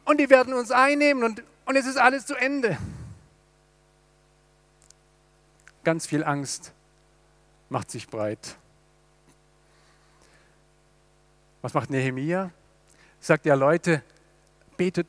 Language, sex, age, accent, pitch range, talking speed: German, male, 50-69, German, 160-220 Hz, 100 wpm